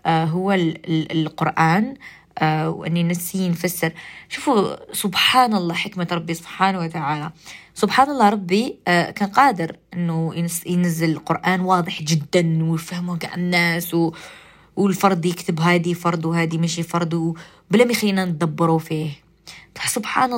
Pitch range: 170-195 Hz